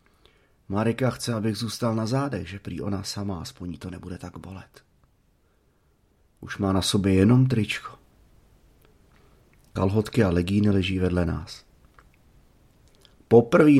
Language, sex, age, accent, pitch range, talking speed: Czech, male, 30-49, native, 95-115 Hz, 120 wpm